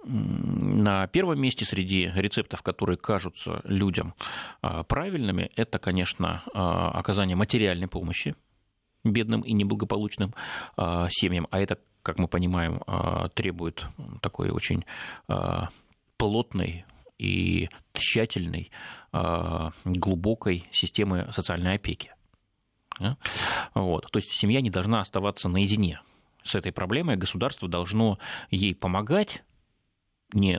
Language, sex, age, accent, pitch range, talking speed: Russian, male, 30-49, native, 90-105 Hz, 95 wpm